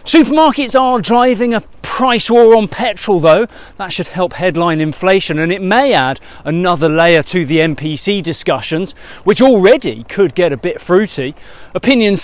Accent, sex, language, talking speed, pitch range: British, male, English, 155 wpm, 155-205 Hz